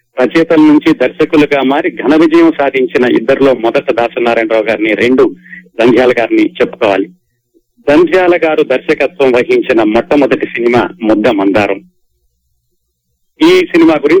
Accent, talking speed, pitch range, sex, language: native, 80 wpm, 120-160 Hz, male, Telugu